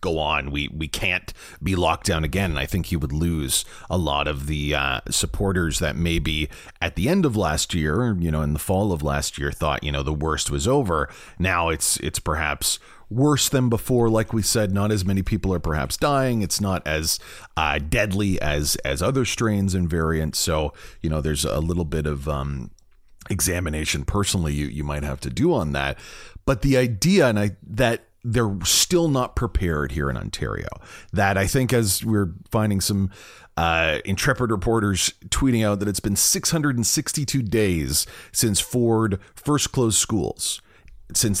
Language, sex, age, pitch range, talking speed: English, male, 30-49, 80-115 Hz, 185 wpm